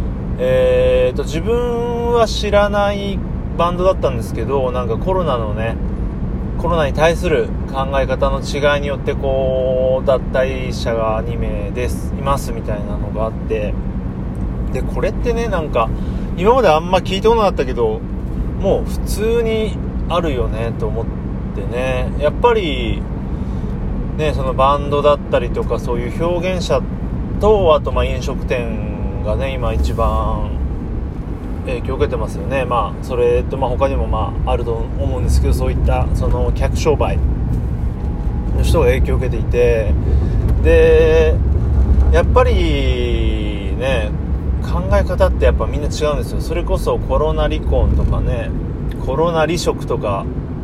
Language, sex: Japanese, male